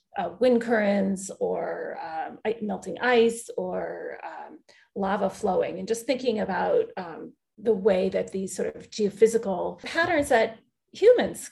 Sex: female